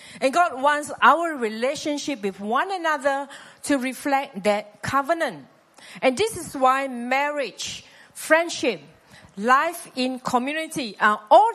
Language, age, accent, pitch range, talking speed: English, 50-69, Malaysian, 195-275 Hz, 120 wpm